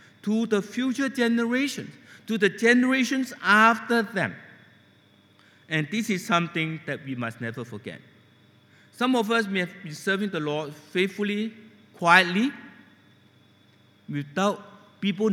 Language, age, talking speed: English, 60-79, 120 wpm